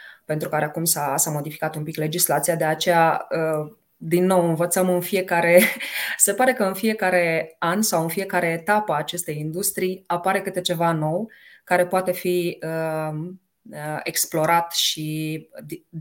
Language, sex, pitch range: Romanian, female, 160-195 Hz